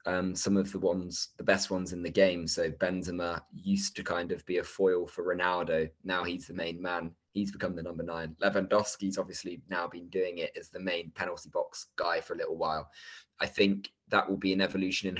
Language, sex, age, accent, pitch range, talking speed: English, male, 20-39, British, 85-105 Hz, 220 wpm